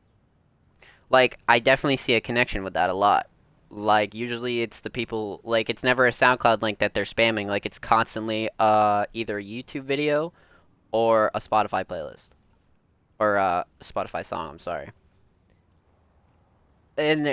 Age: 20-39